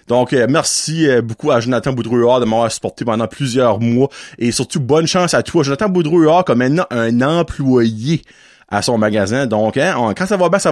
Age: 30-49